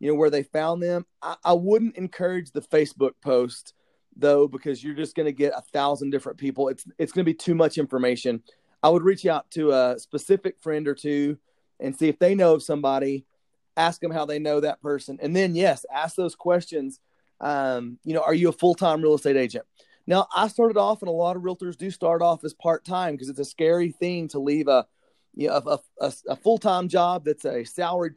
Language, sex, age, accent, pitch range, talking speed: English, male, 30-49, American, 140-180 Hz, 220 wpm